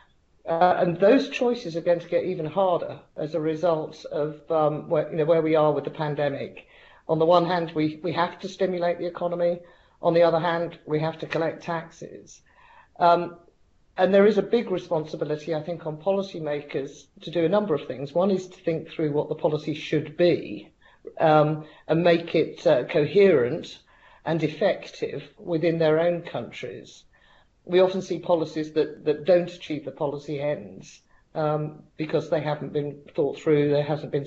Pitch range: 155-180 Hz